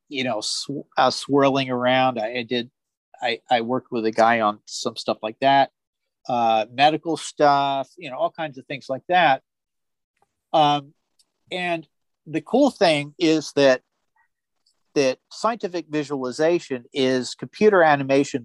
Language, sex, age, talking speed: English, male, 40-59, 145 wpm